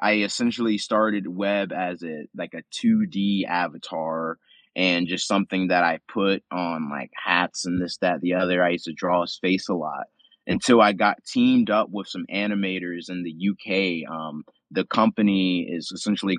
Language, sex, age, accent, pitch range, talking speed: English, male, 20-39, American, 90-105 Hz, 175 wpm